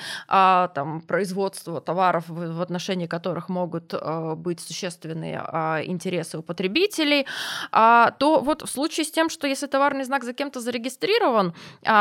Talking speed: 125 wpm